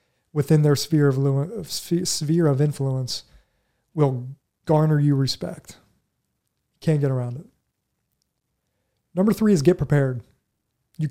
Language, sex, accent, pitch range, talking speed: English, male, American, 140-160 Hz, 115 wpm